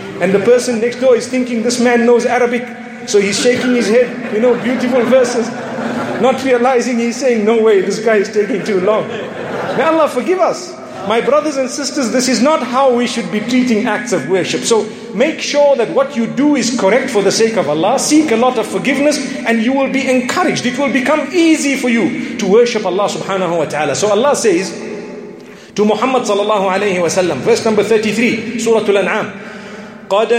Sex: male